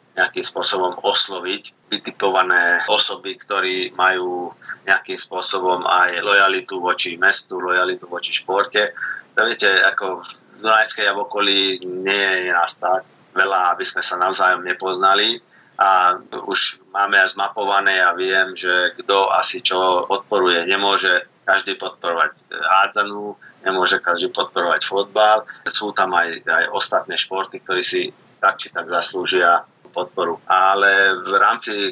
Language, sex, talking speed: Slovak, male, 130 wpm